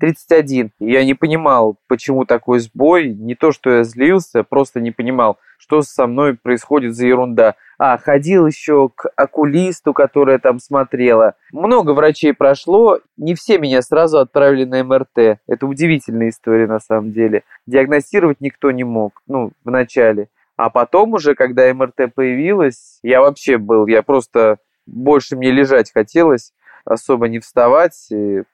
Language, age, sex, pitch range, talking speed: Russian, 20-39, male, 115-145 Hz, 145 wpm